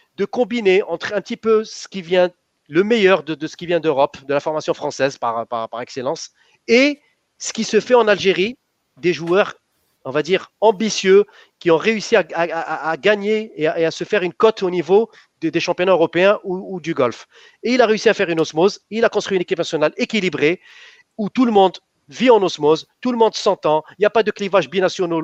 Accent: French